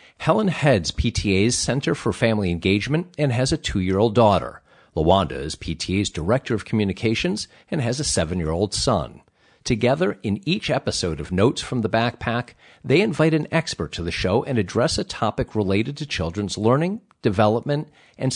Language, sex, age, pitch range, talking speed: English, male, 50-69, 100-135 Hz, 160 wpm